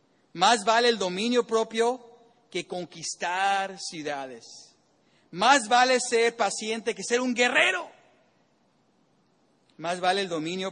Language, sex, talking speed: English, male, 110 wpm